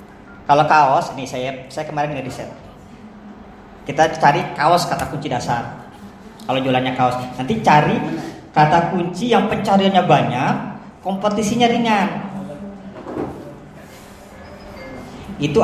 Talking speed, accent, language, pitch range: 100 wpm, native, Indonesian, 140-190 Hz